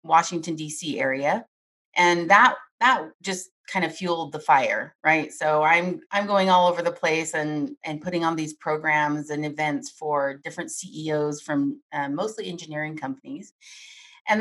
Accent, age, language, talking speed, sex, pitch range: American, 30-49, English, 160 wpm, female, 150-190 Hz